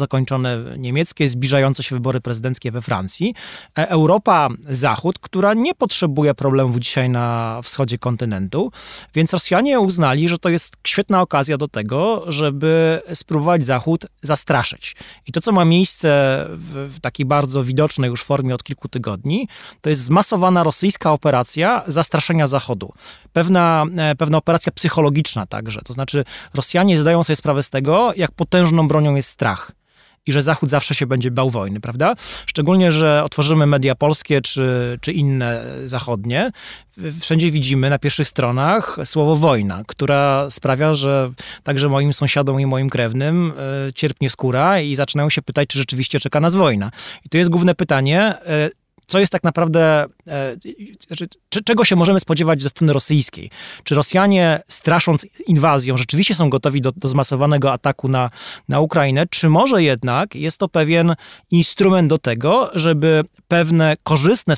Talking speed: 150 wpm